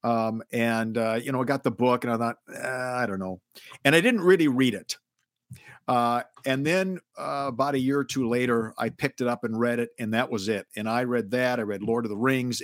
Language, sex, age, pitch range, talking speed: English, male, 50-69, 115-140 Hz, 250 wpm